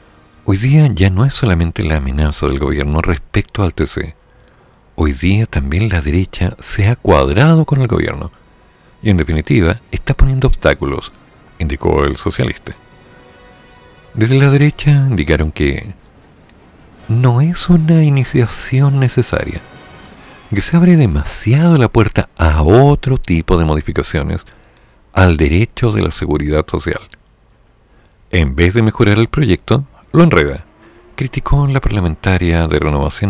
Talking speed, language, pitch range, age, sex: 130 wpm, Spanish, 80-125 Hz, 50-69, male